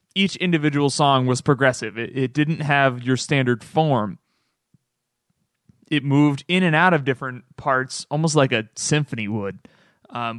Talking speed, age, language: 150 wpm, 20-39, English